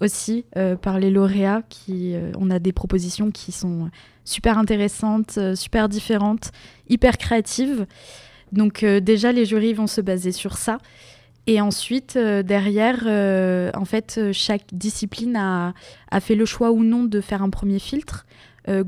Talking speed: 160 wpm